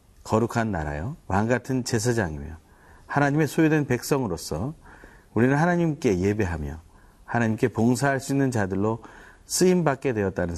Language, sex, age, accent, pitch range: Korean, male, 40-59, native, 90-130 Hz